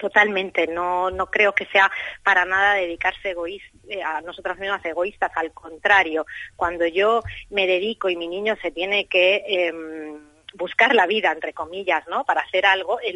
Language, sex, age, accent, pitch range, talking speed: Spanish, female, 30-49, Spanish, 160-195 Hz, 175 wpm